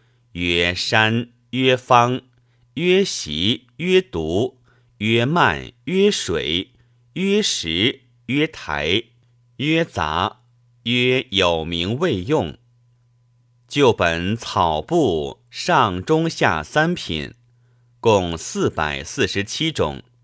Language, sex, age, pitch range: Chinese, male, 50-69, 110-125 Hz